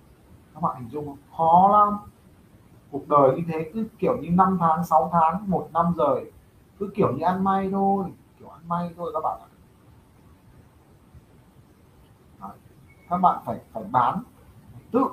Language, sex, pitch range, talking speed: Vietnamese, male, 160-230 Hz, 160 wpm